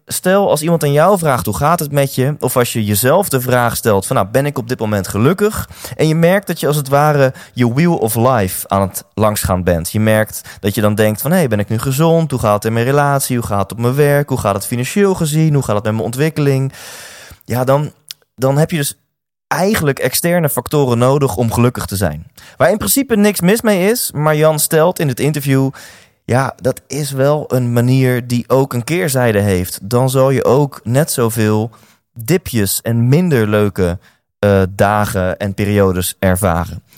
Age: 20-39